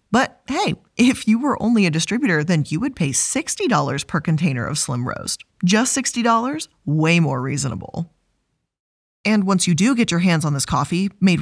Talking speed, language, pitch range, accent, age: 180 wpm, English, 160-230 Hz, American, 20-39